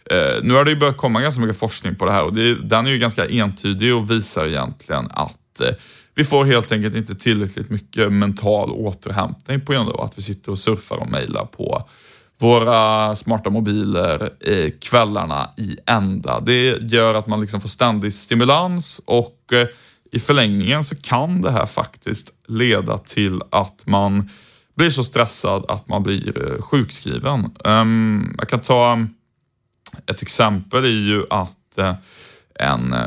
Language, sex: Swedish, male